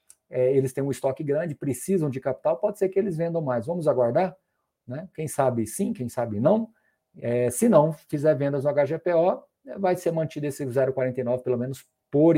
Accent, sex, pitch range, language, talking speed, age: Brazilian, male, 135-200 Hz, Portuguese, 190 wpm, 50-69